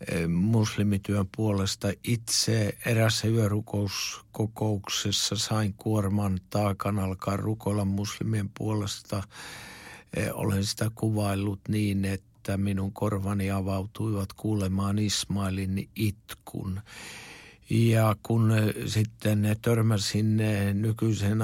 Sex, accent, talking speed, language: male, native, 80 wpm, Finnish